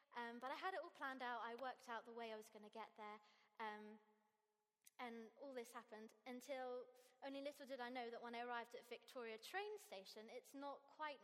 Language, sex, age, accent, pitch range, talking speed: English, female, 20-39, British, 235-300 Hz, 220 wpm